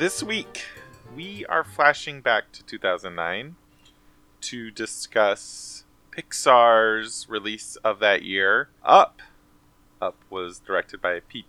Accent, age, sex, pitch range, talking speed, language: American, 20-39, male, 100-130 Hz, 110 wpm, English